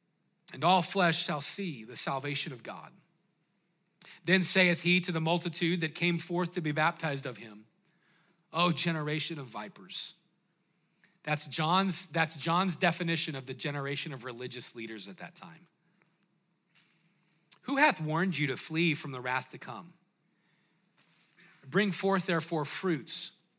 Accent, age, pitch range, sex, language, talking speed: American, 40-59, 165-190 Hz, male, English, 140 wpm